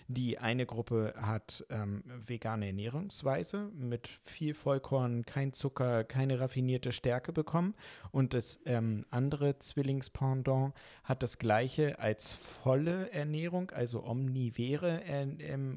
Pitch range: 115-145 Hz